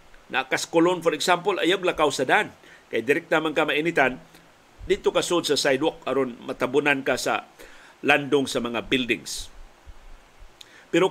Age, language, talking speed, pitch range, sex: 50-69, Filipino, 145 wpm, 135-170 Hz, male